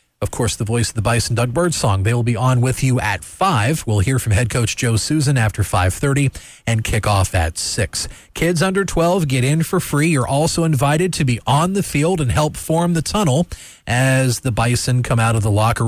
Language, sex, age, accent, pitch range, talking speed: English, male, 40-59, American, 105-145 Hz, 225 wpm